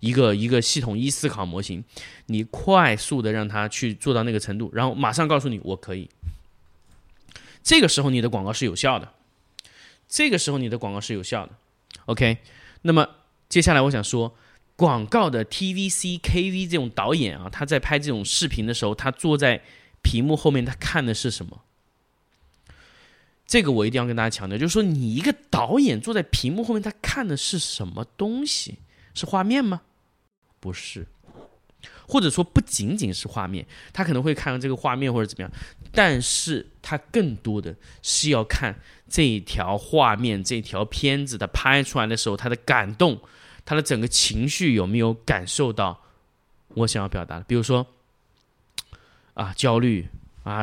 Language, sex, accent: Chinese, male, native